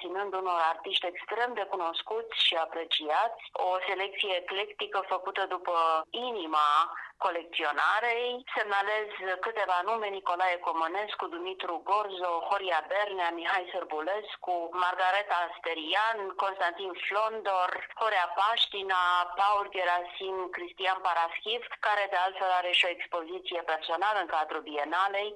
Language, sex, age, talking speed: English, female, 30-49, 110 wpm